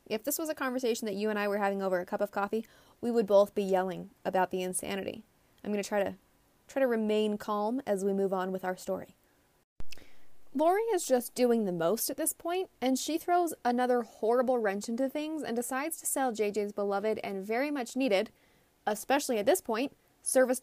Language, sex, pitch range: English, female, 205-260 Hz